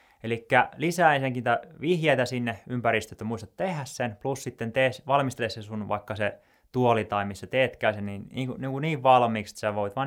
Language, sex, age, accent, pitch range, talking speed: Finnish, male, 20-39, native, 105-135 Hz, 185 wpm